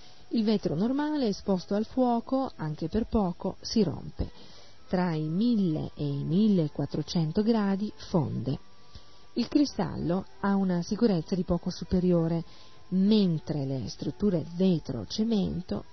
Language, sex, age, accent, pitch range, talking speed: Italian, female, 40-59, native, 170-220 Hz, 115 wpm